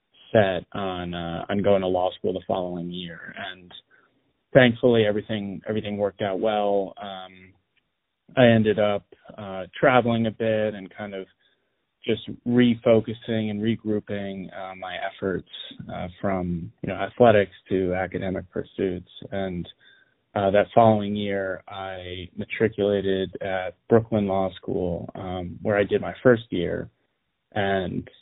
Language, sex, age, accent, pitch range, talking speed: English, male, 20-39, American, 95-110 Hz, 135 wpm